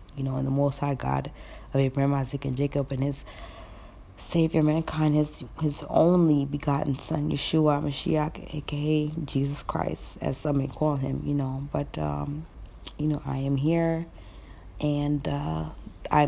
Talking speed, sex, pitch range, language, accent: 155 wpm, female, 130-150 Hz, English, American